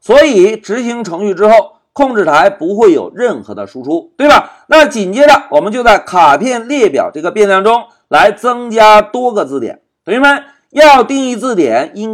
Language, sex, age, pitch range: Chinese, male, 50-69, 215-305 Hz